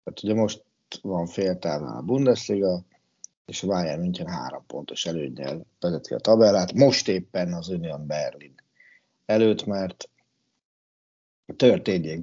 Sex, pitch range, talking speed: male, 95-120 Hz, 130 wpm